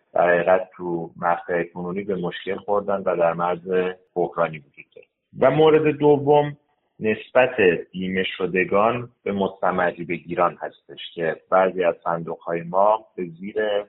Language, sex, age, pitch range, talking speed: Persian, male, 30-49, 85-110 Hz, 130 wpm